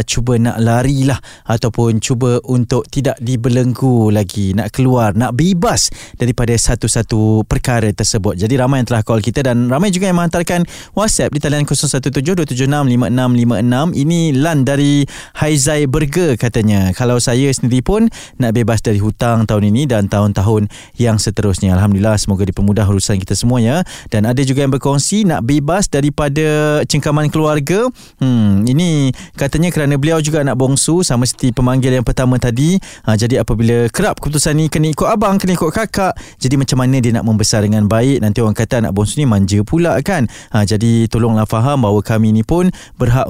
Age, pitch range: 20-39, 115-150 Hz